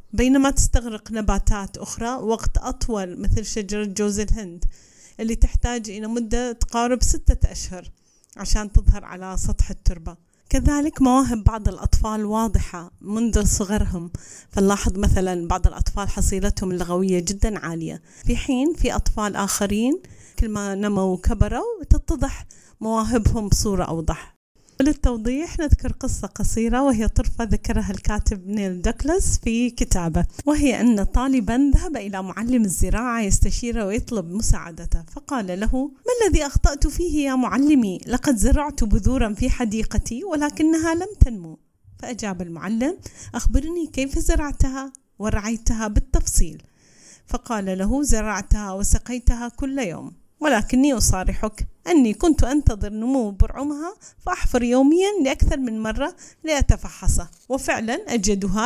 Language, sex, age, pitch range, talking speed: Arabic, female, 30-49, 210-275 Hz, 120 wpm